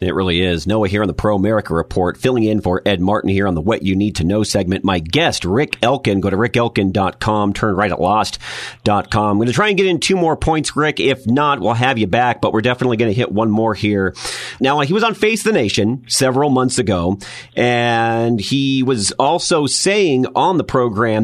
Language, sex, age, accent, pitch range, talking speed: English, male, 40-59, American, 105-155 Hz, 220 wpm